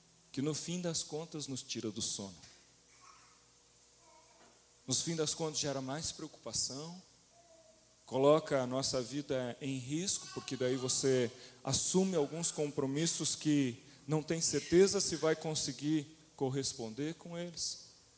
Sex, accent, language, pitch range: male, Brazilian, Portuguese, 130-160 Hz